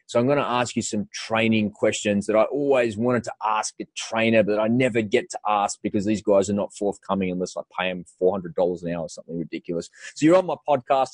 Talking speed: 235 wpm